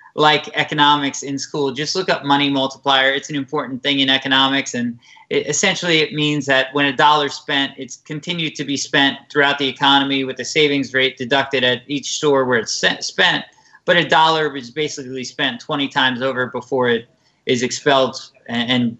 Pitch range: 135-170 Hz